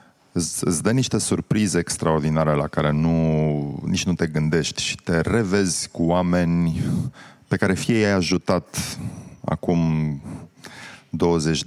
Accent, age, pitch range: native, 30-49, 80-100 Hz